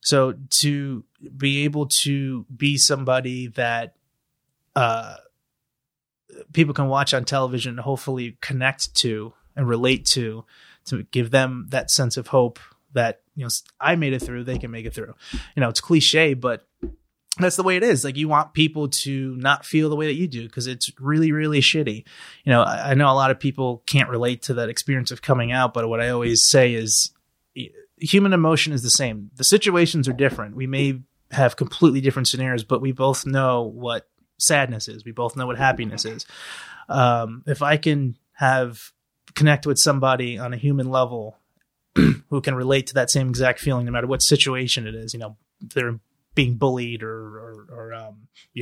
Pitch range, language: 120-140 Hz, English